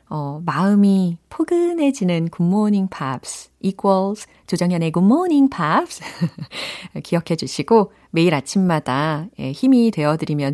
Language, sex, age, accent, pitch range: Korean, female, 40-59, native, 155-235 Hz